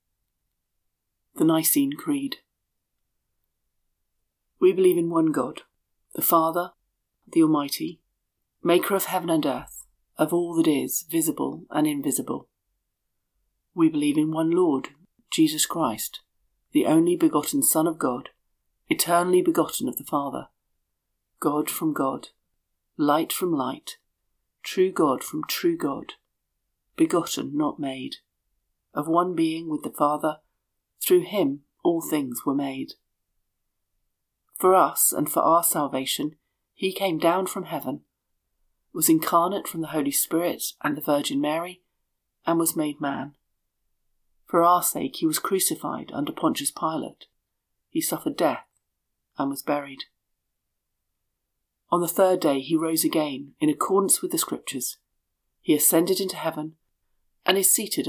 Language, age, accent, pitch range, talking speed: English, 50-69, British, 140-195 Hz, 130 wpm